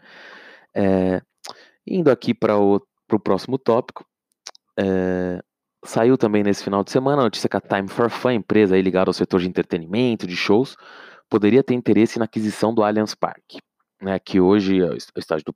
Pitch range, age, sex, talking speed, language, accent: 95-110 Hz, 20-39, male, 175 wpm, English, Brazilian